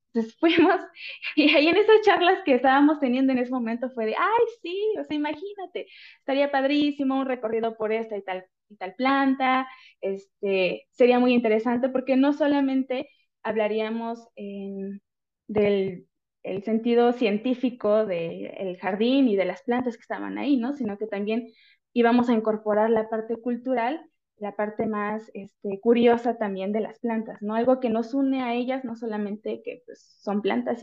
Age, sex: 20-39, female